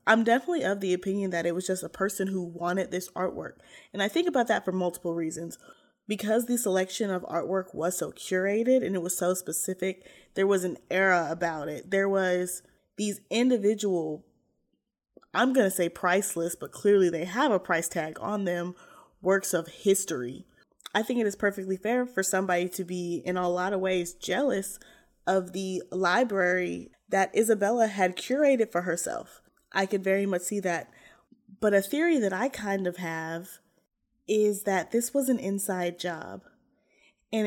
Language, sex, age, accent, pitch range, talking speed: English, female, 20-39, American, 180-215 Hz, 175 wpm